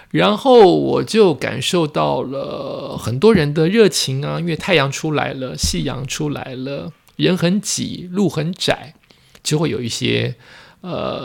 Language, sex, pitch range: Chinese, male, 120-165 Hz